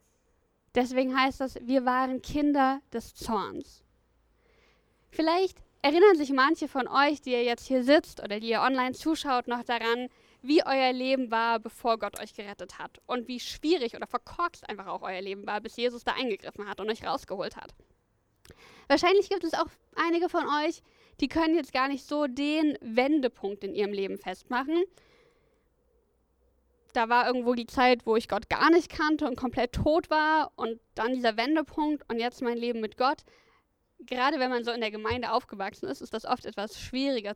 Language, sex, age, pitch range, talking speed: German, female, 20-39, 230-295 Hz, 180 wpm